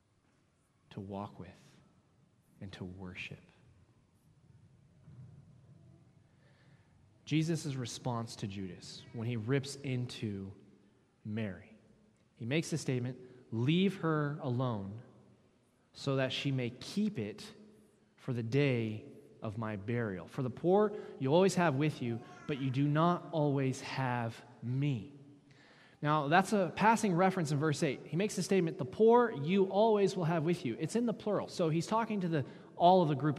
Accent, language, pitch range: American, English, 140-195 Hz